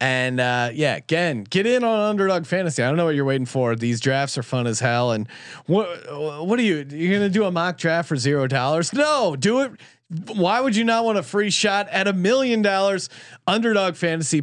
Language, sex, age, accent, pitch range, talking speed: English, male, 30-49, American, 135-190 Hz, 220 wpm